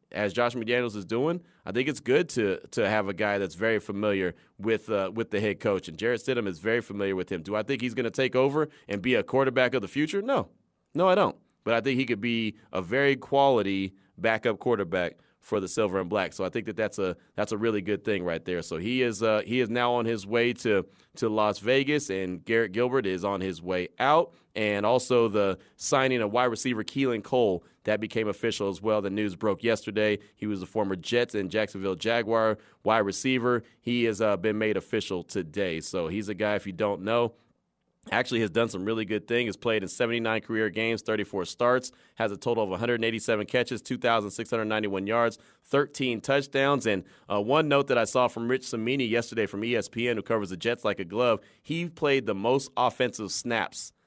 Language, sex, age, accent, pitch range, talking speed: English, male, 30-49, American, 105-125 Hz, 215 wpm